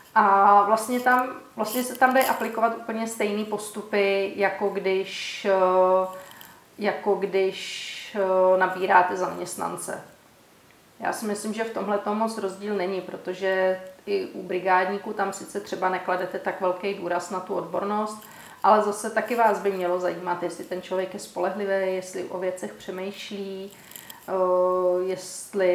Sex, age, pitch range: female, 30-49, 185-220 Hz